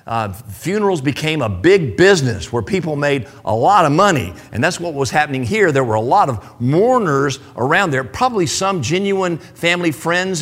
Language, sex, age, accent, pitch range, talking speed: English, male, 50-69, American, 120-170 Hz, 185 wpm